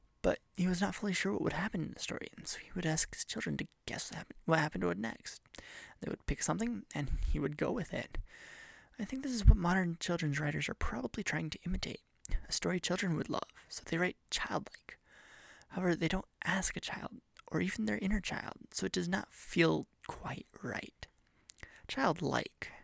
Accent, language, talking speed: American, English, 205 wpm